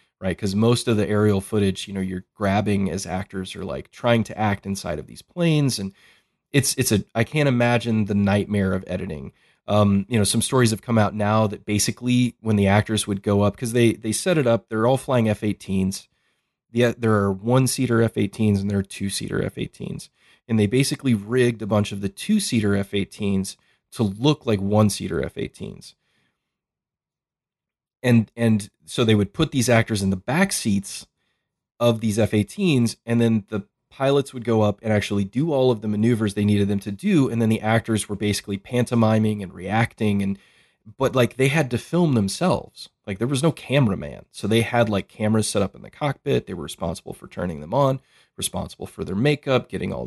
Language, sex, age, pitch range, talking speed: English, male, 30-49, 100-120 Hz, 200 wpm